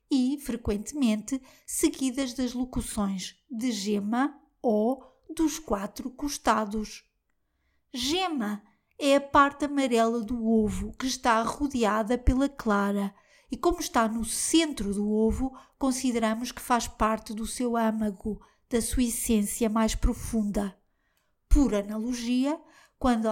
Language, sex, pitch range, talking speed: Portuguese, female, 220-270 Hz, 115 wpm